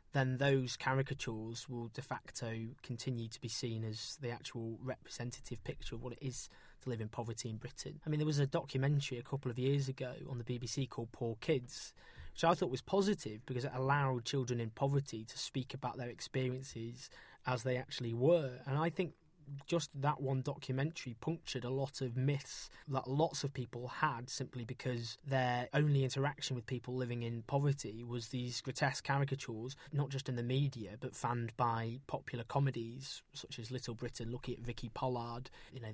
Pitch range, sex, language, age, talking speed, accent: 120-140 Hz, male, English, 20-39, 190 wpm, British